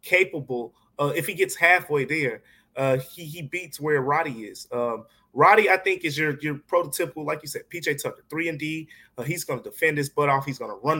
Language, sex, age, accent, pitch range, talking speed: English, male, 20-39, American, 140-170 Hz, 230 wpm